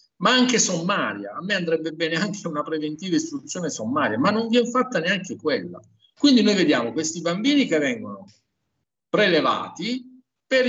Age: 50-69